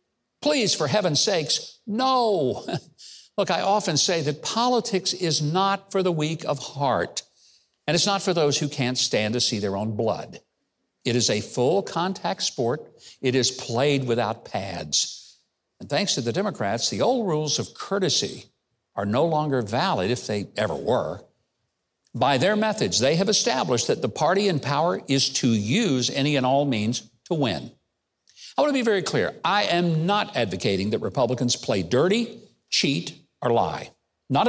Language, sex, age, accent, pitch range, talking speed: English, male, 60-79, American, 130-210 Hz, 170 wpm